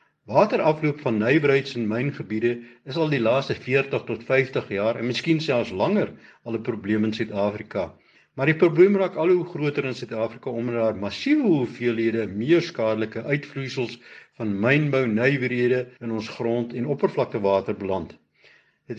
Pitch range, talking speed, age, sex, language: 120-155 Hz, 150 wpm, 60-79, male, Swedish